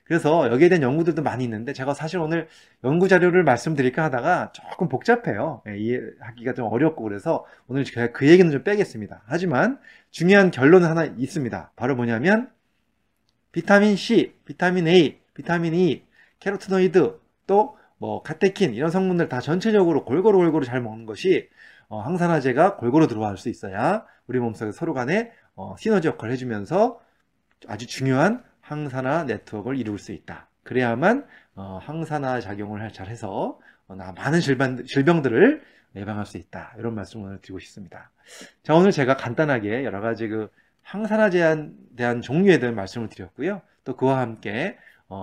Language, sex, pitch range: Korean, male, 115-175 Hz